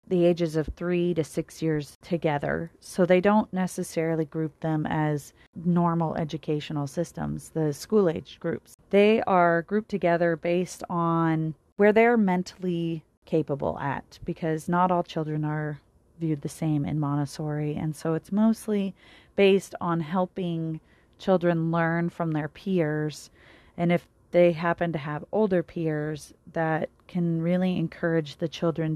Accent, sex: American, female